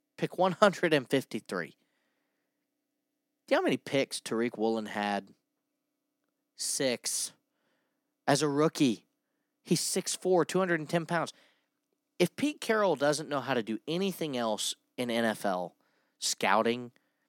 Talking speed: 110 wpm